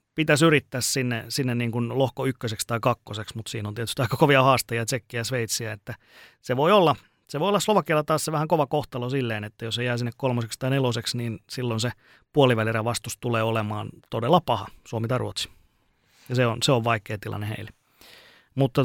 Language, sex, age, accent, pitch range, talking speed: Finnish, male, 30-49, native, 115-135 Hz, 195 wpm